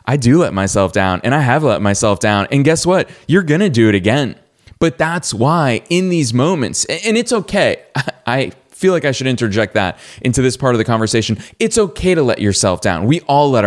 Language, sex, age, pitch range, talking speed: English, male, 20-39, 100-135 Hz, 220 wpm